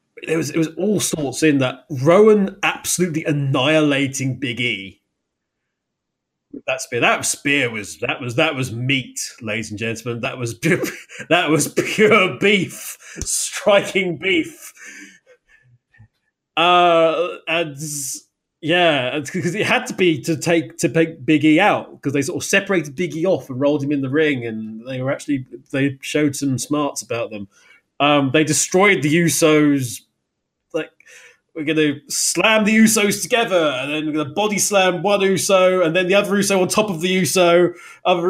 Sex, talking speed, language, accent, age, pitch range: male, 165 wpm, English, British, 20-39, 145-205 Hz